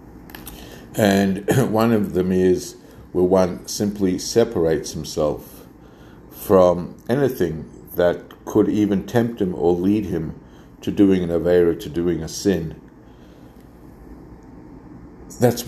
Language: English